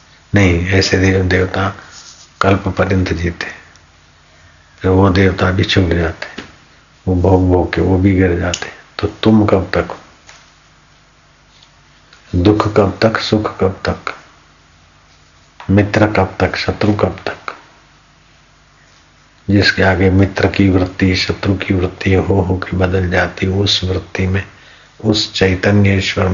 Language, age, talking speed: Hindi, 50-69, 125 wpm